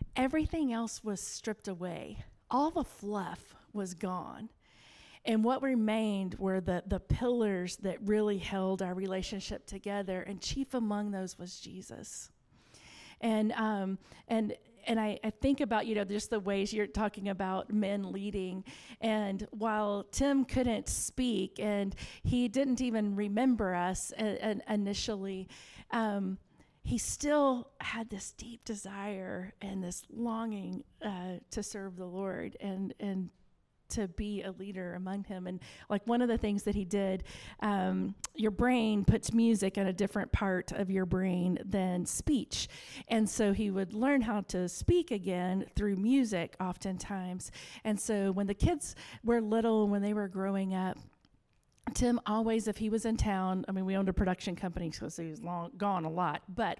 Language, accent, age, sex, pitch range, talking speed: English, American, 40-59, female, 190-225 Hz, 160 wpm